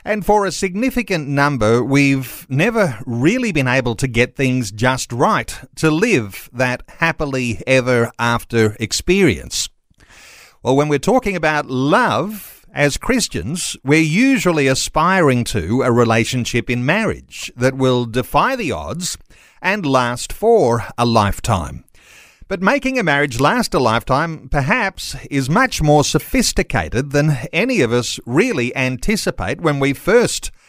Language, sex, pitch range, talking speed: English, male, 120-170 Hz, 135 wpm